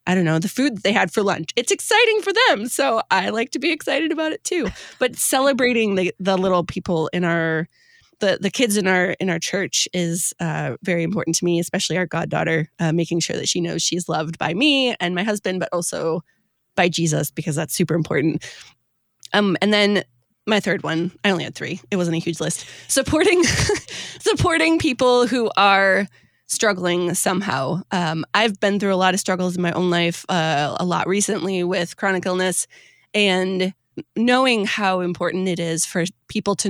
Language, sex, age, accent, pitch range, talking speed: English, female, 20-39, American, 165-205 Hz, 195 wpm